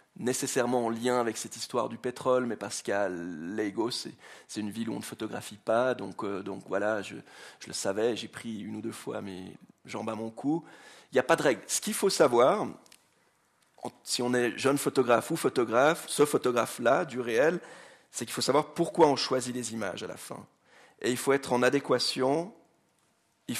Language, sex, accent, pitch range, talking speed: French, male, French, 120-150 Hz, 205 wpm